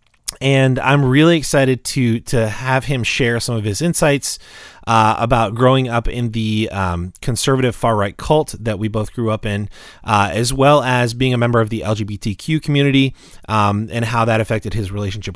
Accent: American